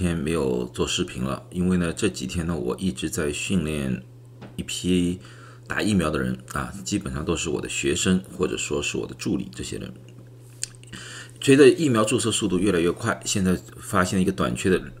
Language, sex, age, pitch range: Chinese, male, 40-59, 85-125 Hz